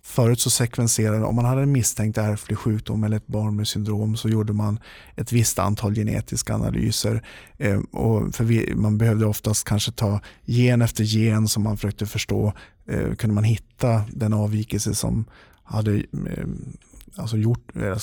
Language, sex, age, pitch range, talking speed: Swedish, male, 50-69, 110-125 Hz, 145 wpm